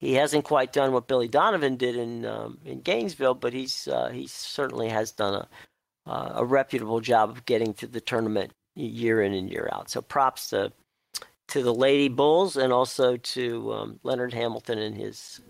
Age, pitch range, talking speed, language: 50-69, 120-150 Hz, 190 wpm, English